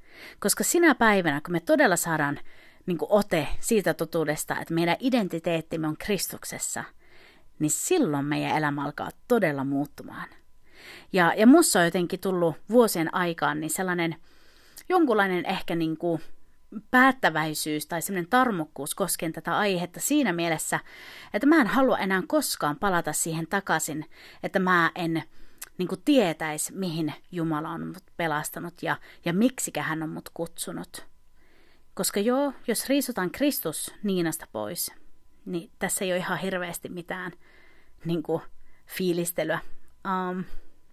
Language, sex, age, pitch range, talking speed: Finnish, female, 30-49, 165-230 Hz, 130 wpm